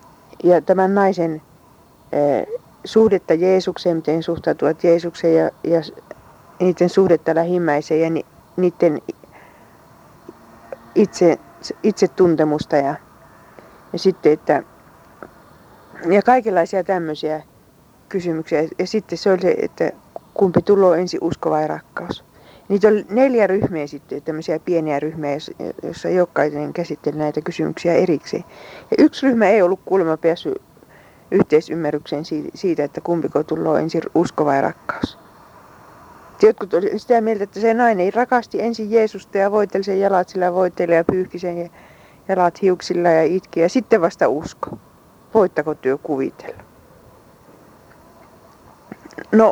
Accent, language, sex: native, Finnish, female